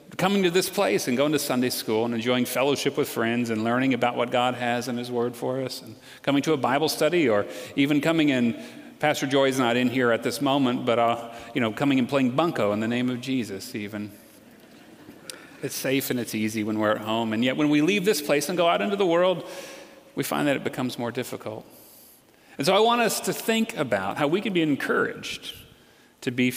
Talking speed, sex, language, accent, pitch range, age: 230 wpm, male, English, American, 120-155 Hz, 40-59